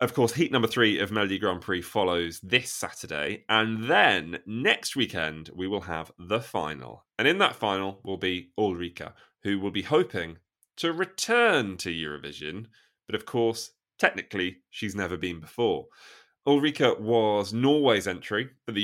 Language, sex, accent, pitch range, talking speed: English, male, British, 90-125 Hz, 160 wpm